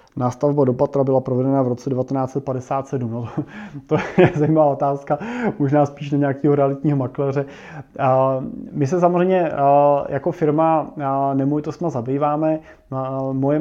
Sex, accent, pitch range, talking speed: male, native, 135-150 Hz, 120 wpm